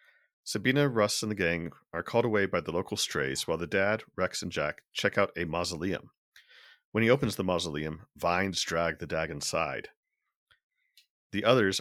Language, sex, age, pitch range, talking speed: English, male, 40-59, 85-110 Hz, 175 wpm